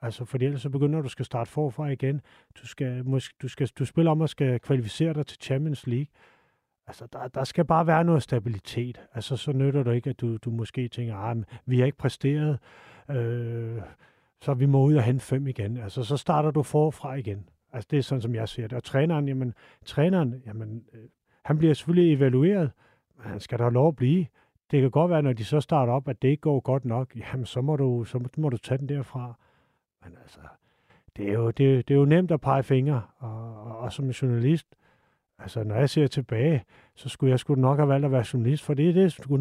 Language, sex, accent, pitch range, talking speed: Danish, male, native, 115-145 Hz, 240 wpm